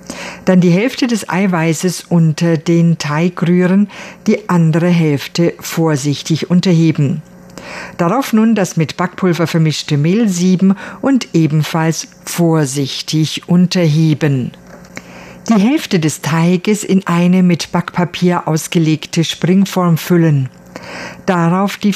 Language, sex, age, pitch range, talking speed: German, female, 50-69, 155-190 Hz, 105 wpm